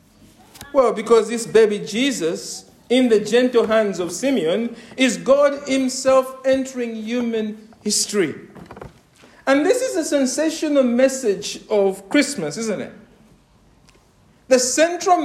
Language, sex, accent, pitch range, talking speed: English, male, Nigerian, 225-285 Hz, 115 wpm